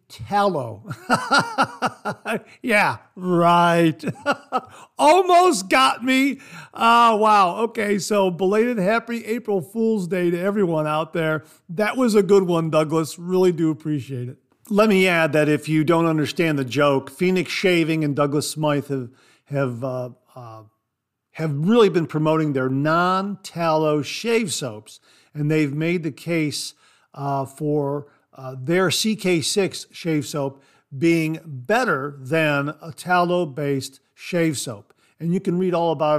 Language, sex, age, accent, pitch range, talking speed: English, male, 50-69, American, 140-185 Hz, 130 wpm